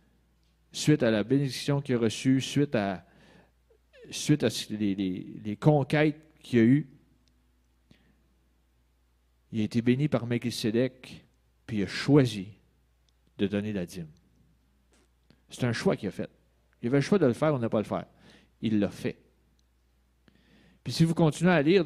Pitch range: 90-150 Hz